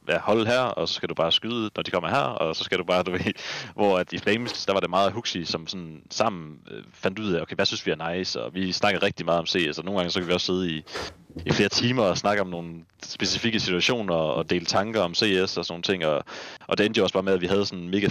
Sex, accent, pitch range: male, native, 85-100 Hz